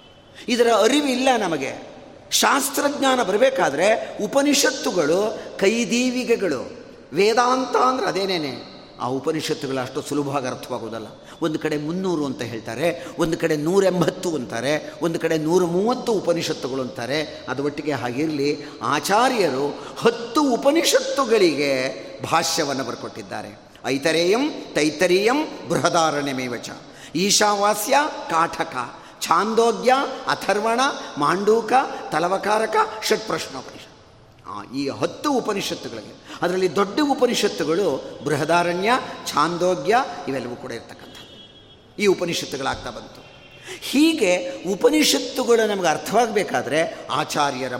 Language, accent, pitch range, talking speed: Kannada, native, 140-230 Hz, 85 wpm